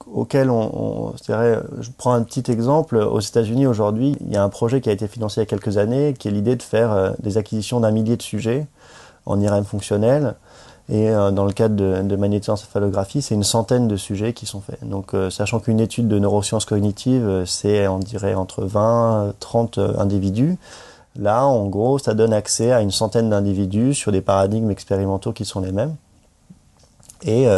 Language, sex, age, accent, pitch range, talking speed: French, male, 30-49, French, 100-120 Hz, 200 wpm